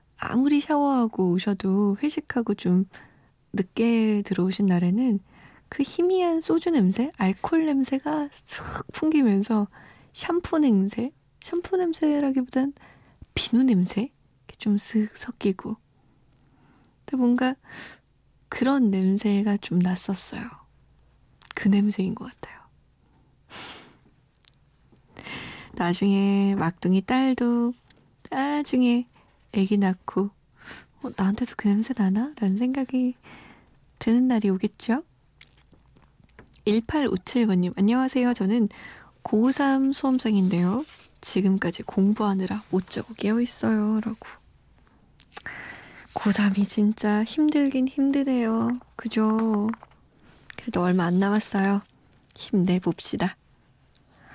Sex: female